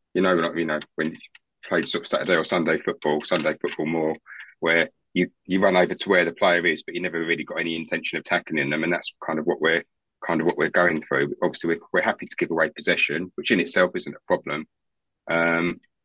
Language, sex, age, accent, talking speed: English, male, 30-49, British, 245 wpm